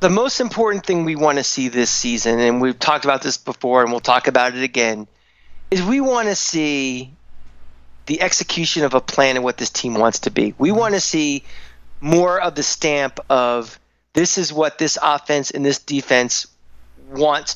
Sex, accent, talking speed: male, American, 195 wpm